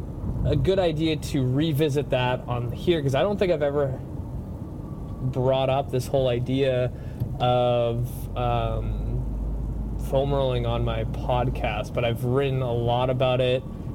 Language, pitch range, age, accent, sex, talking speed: English, 120-150 Hz, 20-39, American, male, 140 wpm